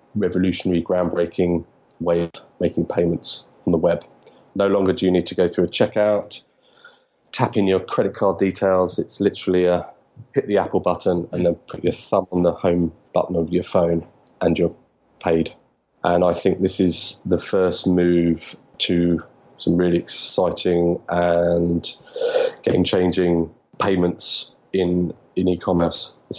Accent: British